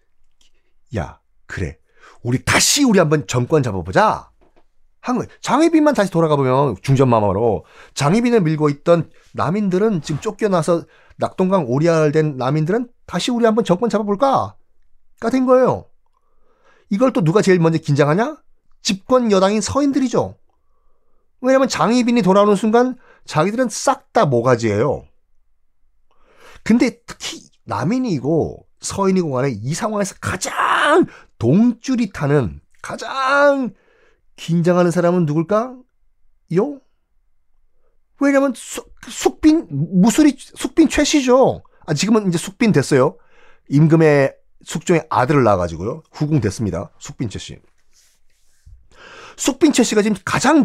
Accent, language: native, Korean